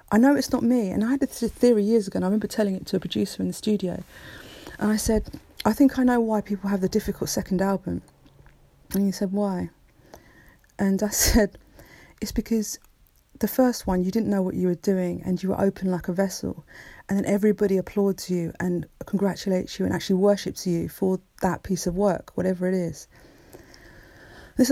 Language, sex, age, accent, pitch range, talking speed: English, female, 40-59, British, 180-220 Hz, 205 wpm